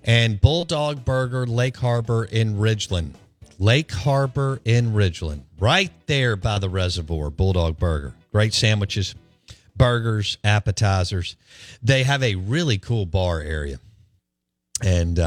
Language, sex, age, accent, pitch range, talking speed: English, male, 50-69, American, 95-135 Hz, 120 wpm